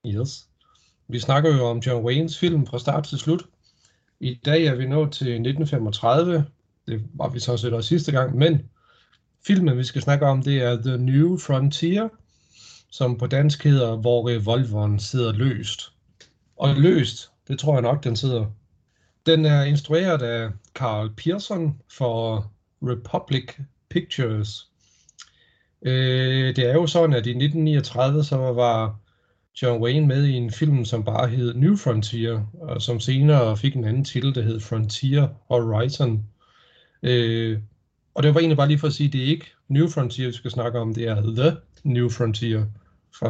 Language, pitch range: Danish, 120-150 Hz